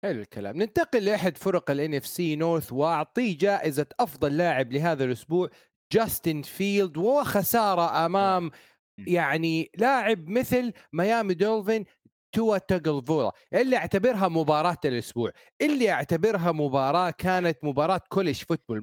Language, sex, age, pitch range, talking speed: Arabic, male, 40-59, 165-210 Hz, 105 wpm